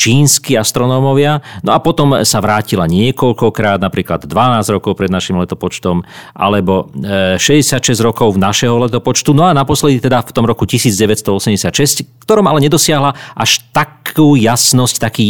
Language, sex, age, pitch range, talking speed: Slovak, male, 40-59, 100-130 Hz, 135 wpm